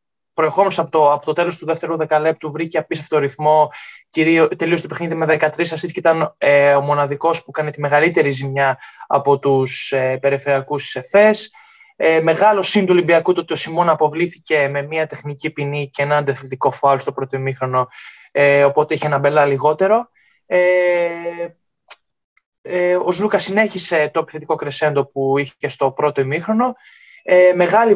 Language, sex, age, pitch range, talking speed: Greek, male, 20-39, 145-205 Hz, 160 wpm